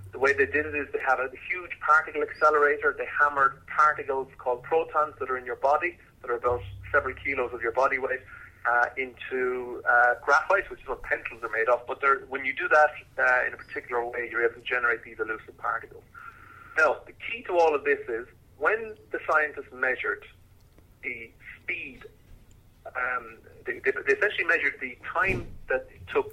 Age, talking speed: 30-49, 190 wpm